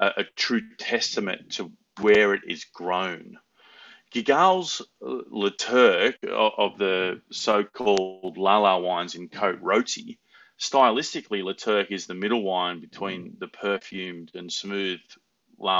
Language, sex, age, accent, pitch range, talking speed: English, male, 30-49, Australian, 90-115 Hz, 130 wpm